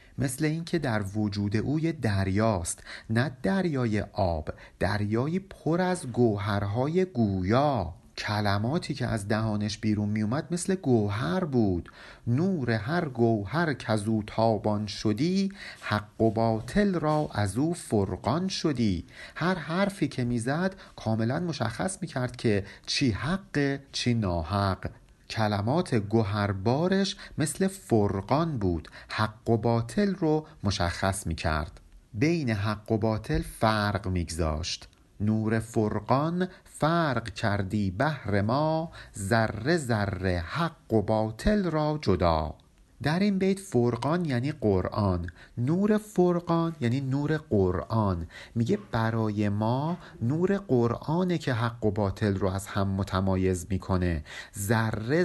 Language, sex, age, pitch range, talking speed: Persian, male, 50-69, 105-155 Hz, 115 wpm